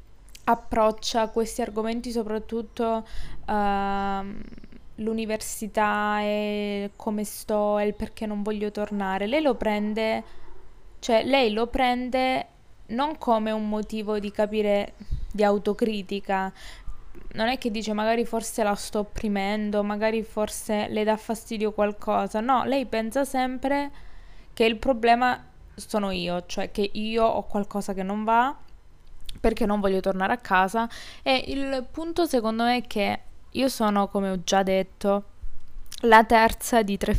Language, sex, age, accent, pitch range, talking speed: Italian, female, 20-39, native, 200-230 Hz, 135 wpm